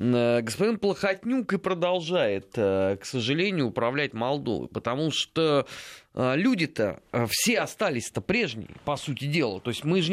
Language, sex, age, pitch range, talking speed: Russian, male, 20-39, 130-195 Hz, 135 wpm